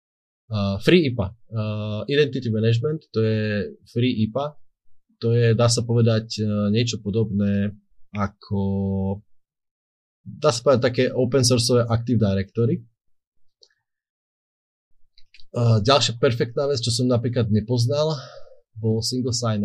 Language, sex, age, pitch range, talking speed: Slovak, male, 30-49, 100-120 Hz, 115 wpm